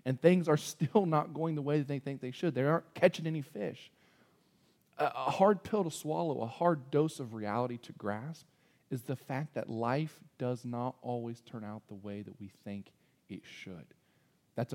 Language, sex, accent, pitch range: English, male, American, 125-185 Hz